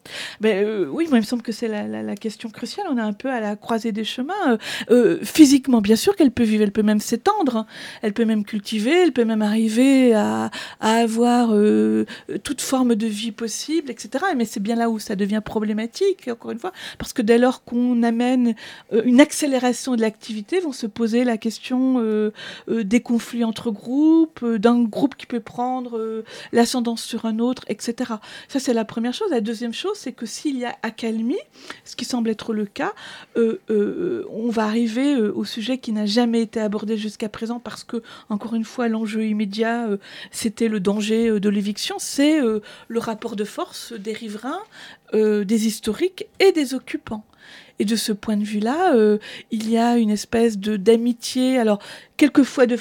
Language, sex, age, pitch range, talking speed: French, female, 40-59, 220-250 Hz, 205 wpm